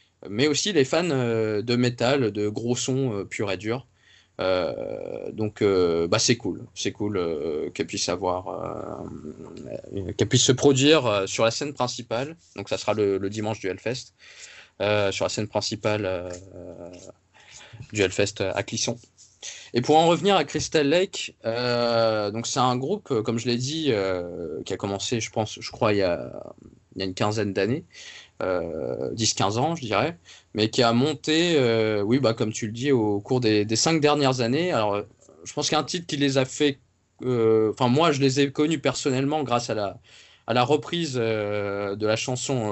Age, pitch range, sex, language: 20-39, 105-130 Hz, male, French